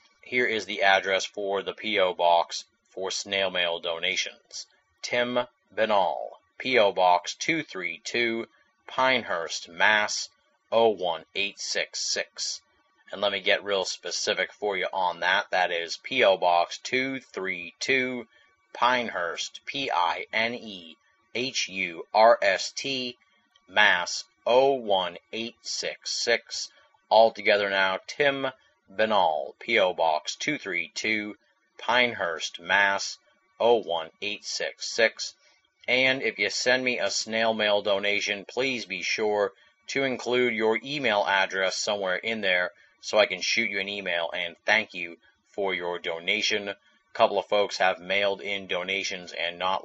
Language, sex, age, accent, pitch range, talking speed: English, male, 30-49, American, 95-115 Hz, 110 wpm